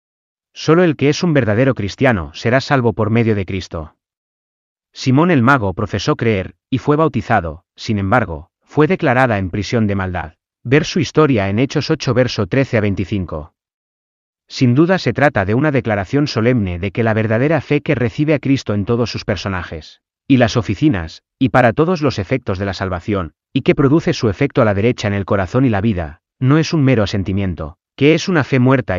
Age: 30-49